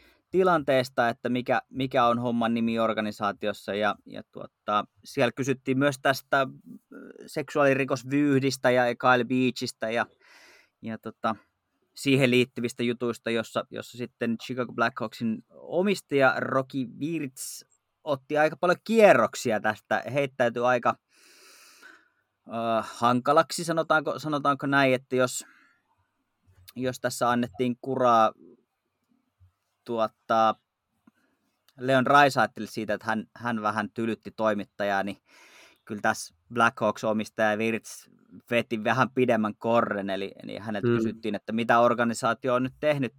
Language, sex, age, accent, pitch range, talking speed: Finnish, male, 30-49, native, 115-135 Hz, 105 wpm